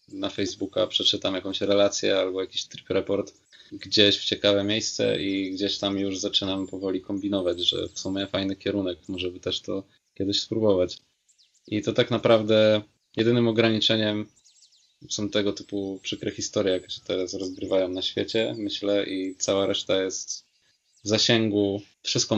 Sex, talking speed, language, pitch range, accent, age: male, 150 wpm, Polish, 95-105 Hz, native, 20-39